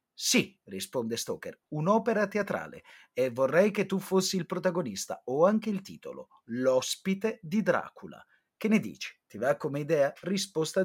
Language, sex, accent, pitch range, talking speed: Italian, male, native, 135-210 Hz, 150 wpm